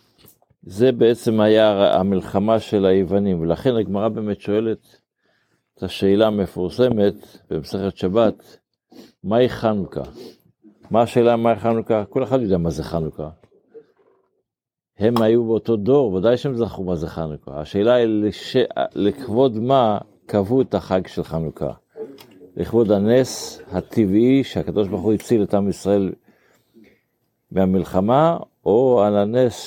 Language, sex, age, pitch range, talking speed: Hebrew, male, 50-69, 95-115 Hz, 120 wpm